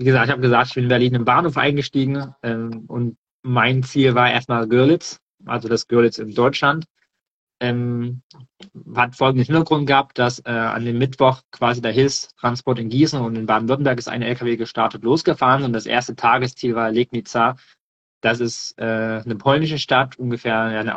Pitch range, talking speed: 115-130 Hz, 175 wpm